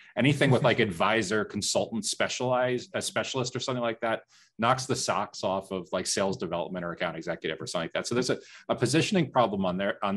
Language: English